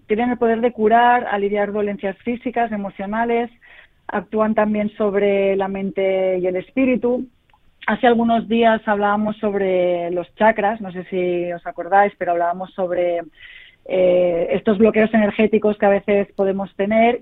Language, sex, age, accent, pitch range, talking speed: Spanish, female, 30-49, Spanish, 195-235 Hz, 145 wpm